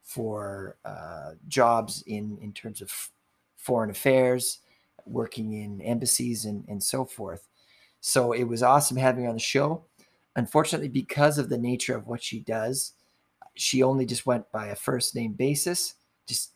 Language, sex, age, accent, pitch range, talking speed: English, male, 30-49, American, 105-130 Hz, 165 wpm